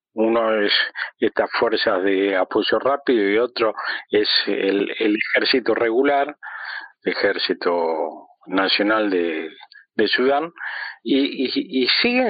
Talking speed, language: 115 wpm, Spanish